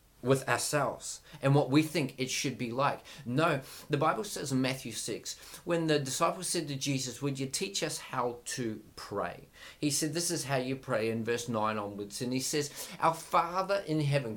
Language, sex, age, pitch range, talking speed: English, male, 40-59, 130-165 Hz, 200 wpm